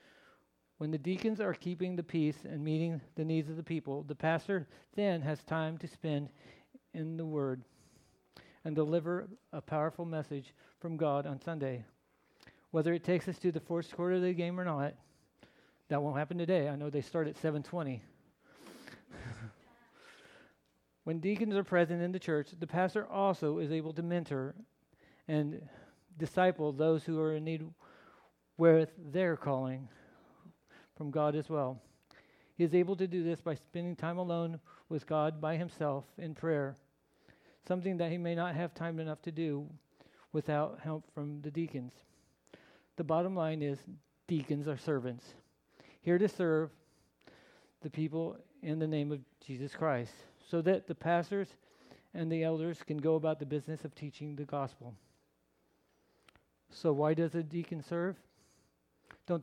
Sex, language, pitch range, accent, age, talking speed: male, English, 145-170 Hz, American, 40-59, 155 wpm